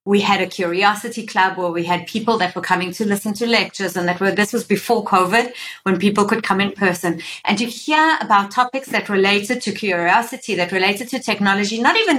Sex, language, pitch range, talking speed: female, English, 180-230 Hz, 215 wpm